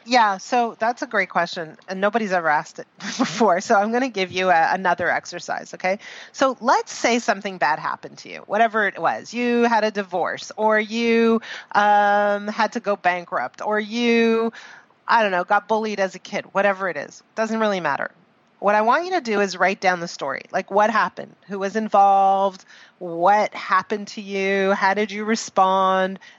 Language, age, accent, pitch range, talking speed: English, 30-49, American, 195-245 Hz, 190 wpm